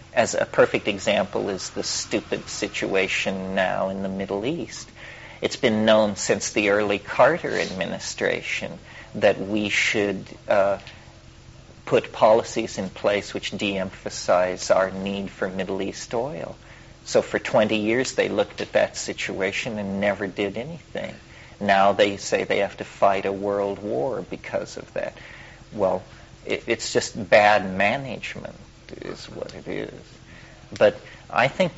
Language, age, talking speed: English, 40-59, 140 wpm